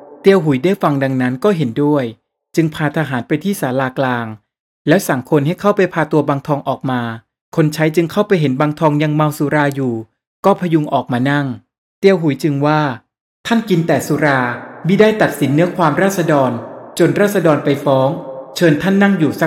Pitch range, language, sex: 135-175 Hz, Thai, male